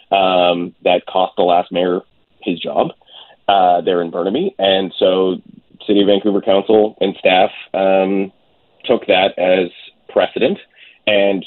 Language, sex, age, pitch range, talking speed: English, male, 20-39, 95-105 Hz, 135 wpm